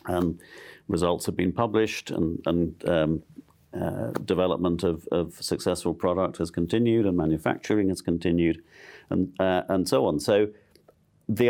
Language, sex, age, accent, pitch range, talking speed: English, male, 50-69, British, 80-90 Hz, 145 wpm